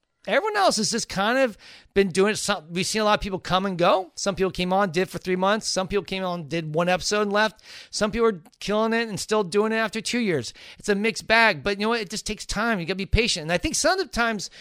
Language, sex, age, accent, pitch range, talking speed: English, male, 40-59, American, 160-215 Hz, 280 wpm